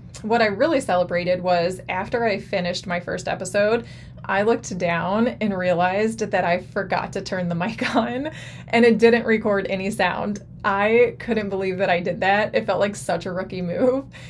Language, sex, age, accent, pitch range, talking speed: English, female, 20-39, American, 180-215 Hz, 185 wpm